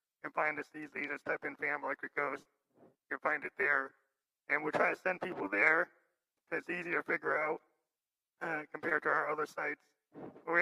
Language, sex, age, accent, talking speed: English, male, 40-59, American, 200 wpm